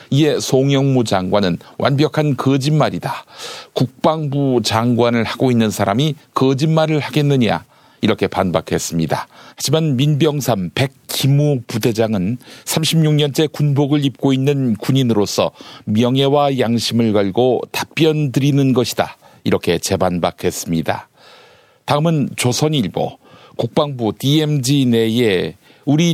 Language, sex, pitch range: Korean, male, 115-145 Hz